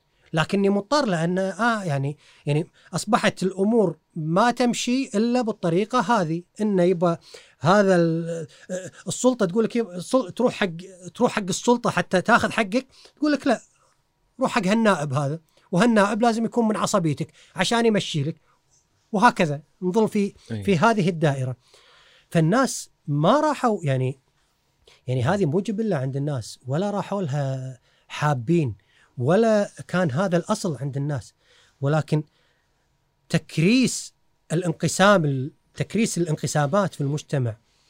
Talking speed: 120 wpm